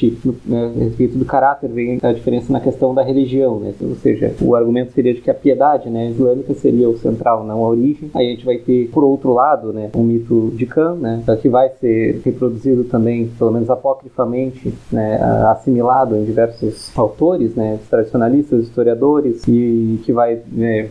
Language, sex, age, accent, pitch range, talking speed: Portuguese, male, 20-39, Brazilian, 115-140 Hz, 195 wpm